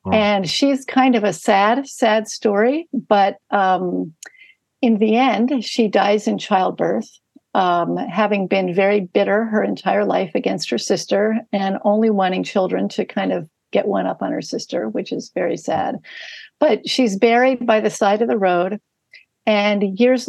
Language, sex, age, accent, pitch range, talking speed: English, female, 60-79, American, 195-235 Hz, 165 wpm